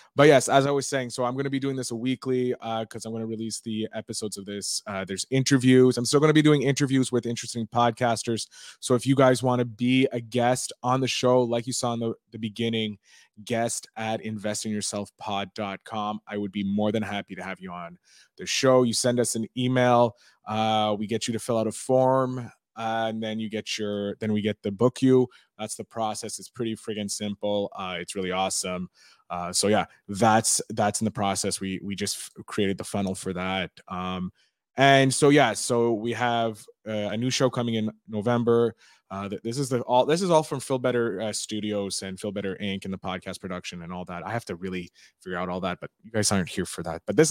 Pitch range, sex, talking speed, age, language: 100-125 Hz, male, 230 wpm, 20-39, English